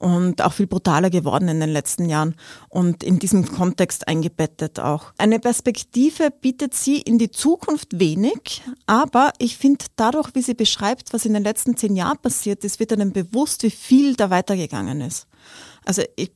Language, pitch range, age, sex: German, 185-230 Hz, 30-49, female